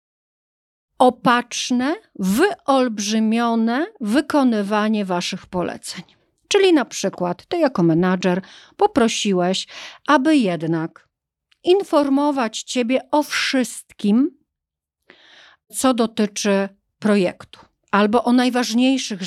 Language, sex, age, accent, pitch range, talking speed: Polish, female, 40-59, native, 200-275 Hz, 75 wpm